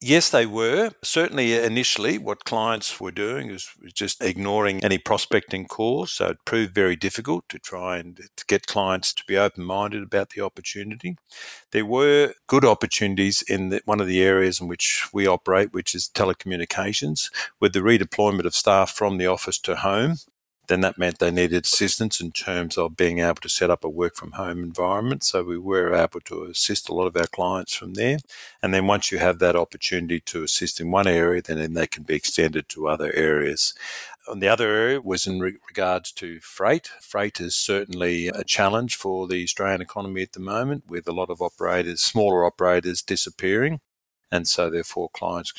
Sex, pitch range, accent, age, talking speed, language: male, 85-105 Hz, Australian, 50-69, 185 wpm, English